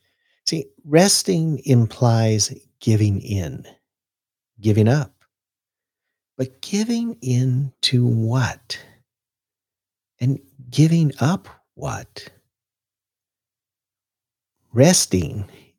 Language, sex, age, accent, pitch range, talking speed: English, male, 50-69, American, 105-135 Hz, 60 wpm